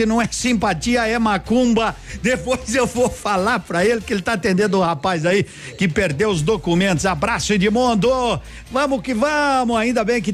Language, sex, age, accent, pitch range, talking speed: Portuguese, male, 60-79, Brazilian, 175-225 Hz, 185 wpm